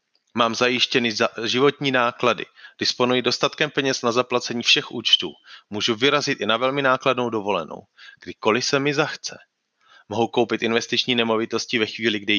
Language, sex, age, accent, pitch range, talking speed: Czech, male, 30-49, native, 115-135 Hz, 140 wpm